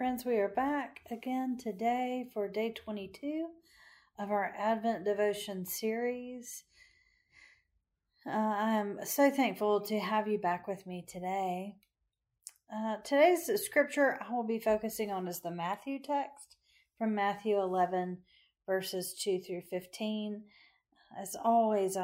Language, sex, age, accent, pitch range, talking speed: English, female, 40-59, American, 190-250 Hz, 125 wpm